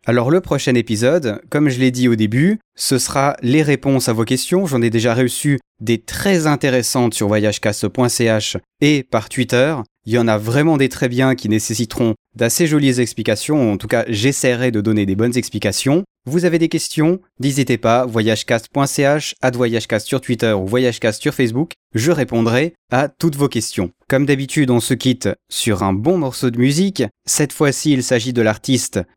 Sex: male